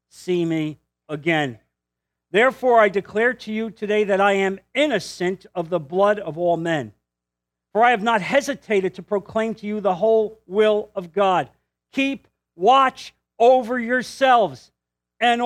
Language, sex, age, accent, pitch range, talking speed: English, male, 50-69, American, 170-240 Hz, 150 wpm